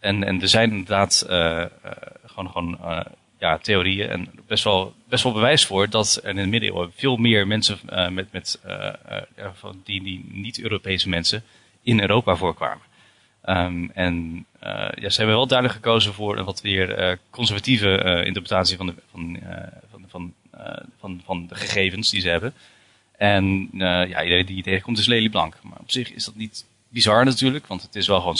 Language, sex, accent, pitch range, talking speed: Dutch, male, Dutch, 95-115 Hz, 180 wpm